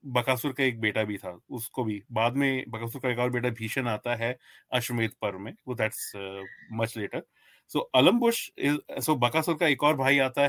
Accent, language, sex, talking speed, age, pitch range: native, Hindi, male, 185 wpm, 30-49, 115-140 Hz